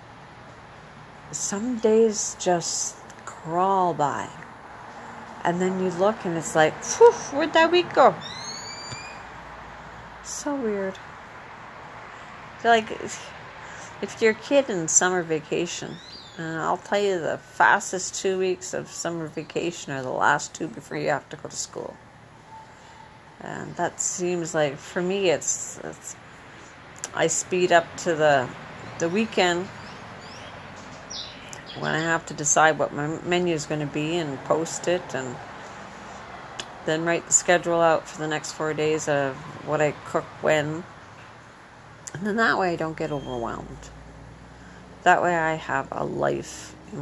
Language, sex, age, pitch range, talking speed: English, female, 50-69, 145-180 Hz, 140 wpm